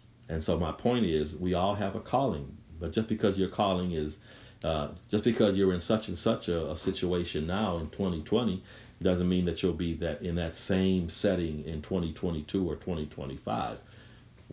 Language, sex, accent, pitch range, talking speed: English, male, American, 75-100 Hz, 180 wpm